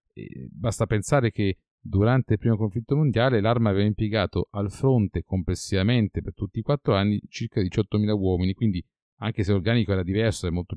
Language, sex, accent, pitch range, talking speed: Italian, male, native, 90-115 Hz, 165 wpm